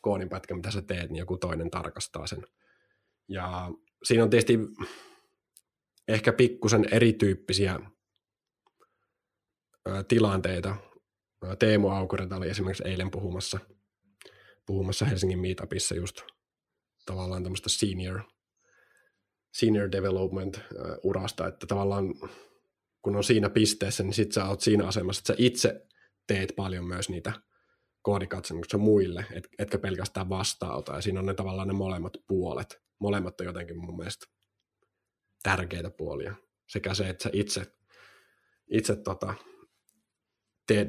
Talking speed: 115 wpm